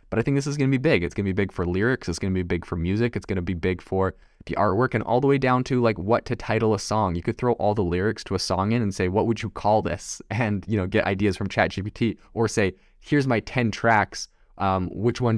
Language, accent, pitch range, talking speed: English, American, 95-115 Hz, 295 wpm